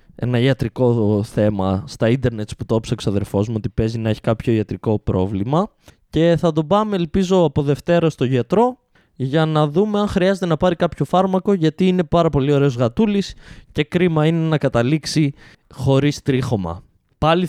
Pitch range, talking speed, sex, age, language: 125-185 Hz, 170 wpm, male, 20-39, Greek